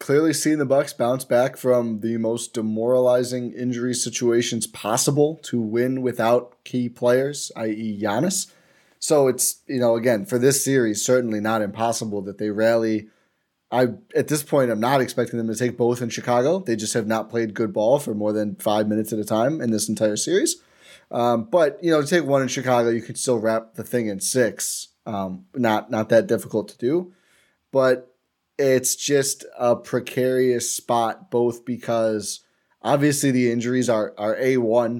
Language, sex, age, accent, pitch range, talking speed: English, male, 20-39, American, 110-130 Hz, 180 wpm